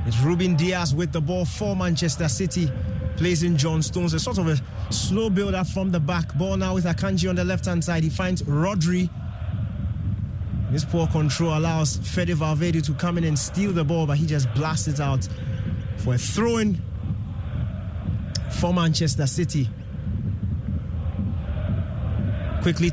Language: English